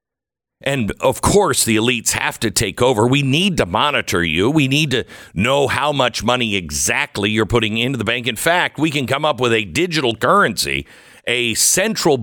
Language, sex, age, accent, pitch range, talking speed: English, male, 50-69, American, 100-140 Hz, 190 wpm